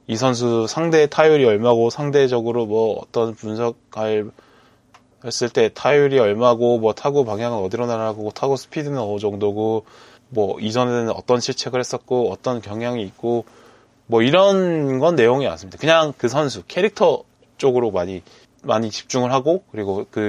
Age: 20-39